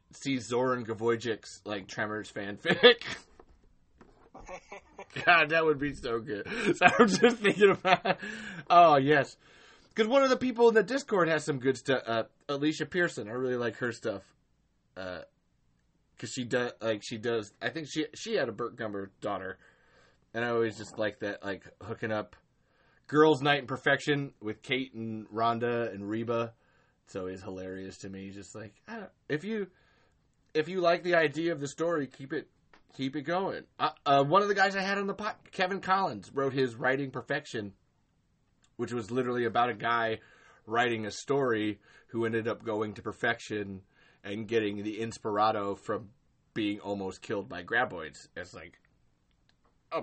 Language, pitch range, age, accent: English, 105-155 Hz, 30-49, American